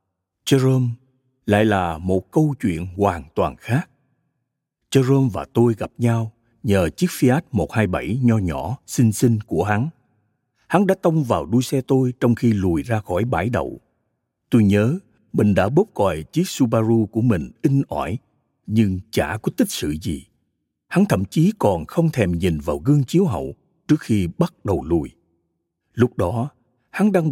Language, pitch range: Vietnamese, 95-130 Hz